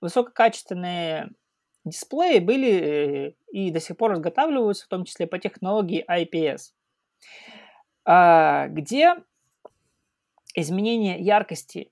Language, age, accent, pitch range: Russian, 20-39, native, 160-215 Hz